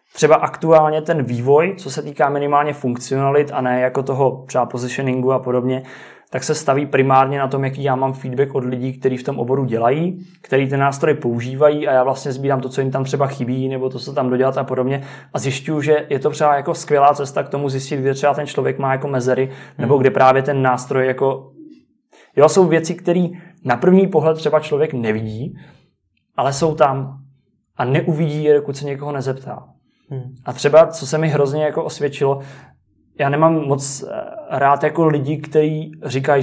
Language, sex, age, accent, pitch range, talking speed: Czech, male, 20-39, native, 130-150 Hz, 190 wpm